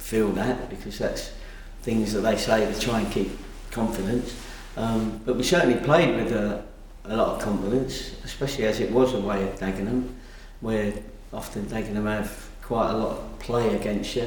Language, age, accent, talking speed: English, 40-59, British, 180 wpm